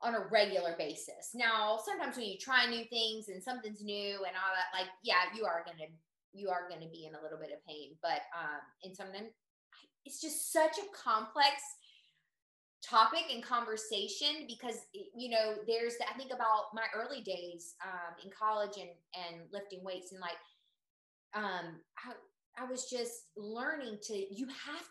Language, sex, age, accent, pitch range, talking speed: English, female, 20-39, American, 190-275 Hz, 180 wpm